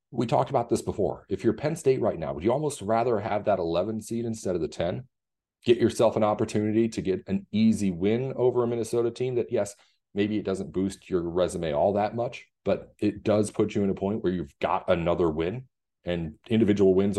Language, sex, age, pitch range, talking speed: English, male, 40-59, 95-115 Hz, 220 wpm